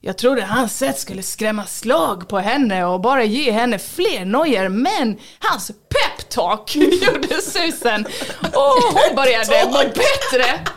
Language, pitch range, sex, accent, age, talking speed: English, 195-280 Hz, female, Swedish, 20-39, 140 wpm